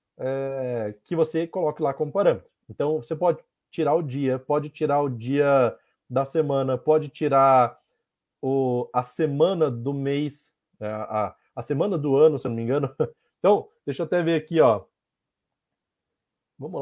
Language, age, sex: Portuguese, 20-39, male